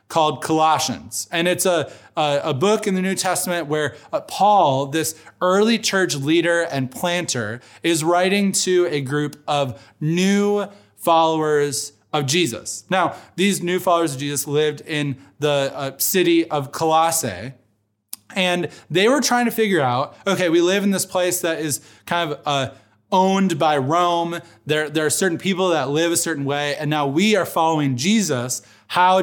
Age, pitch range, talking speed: 20-39, 140-180 Hz, 160 wpm